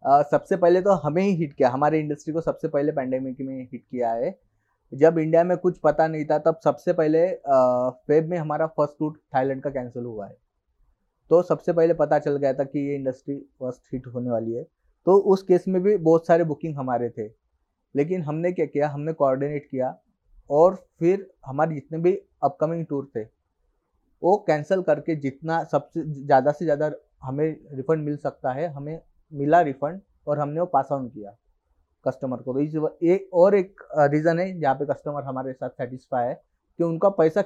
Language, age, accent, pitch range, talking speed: English, 30-49, Indian, 135-165 Hz, 155 wpm